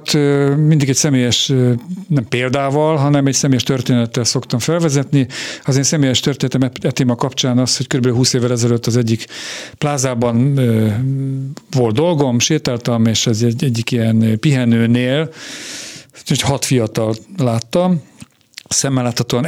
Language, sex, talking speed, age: Hungarian, male, 120 wpm, 50-69